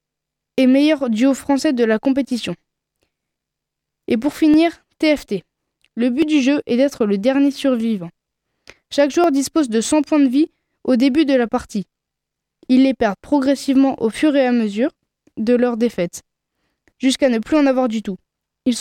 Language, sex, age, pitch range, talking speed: French, female, 20-39, 240-285 Hz, 170 wpm